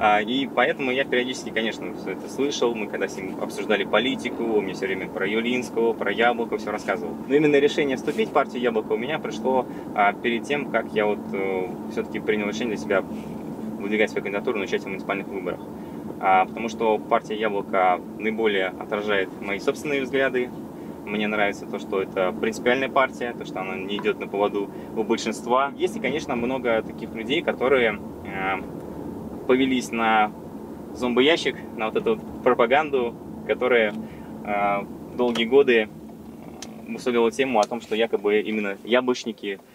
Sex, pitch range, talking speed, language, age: male, 105-120 Hz, 155 wpm, Russian, 20-39